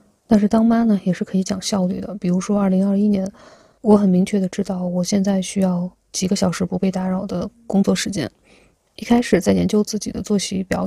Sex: female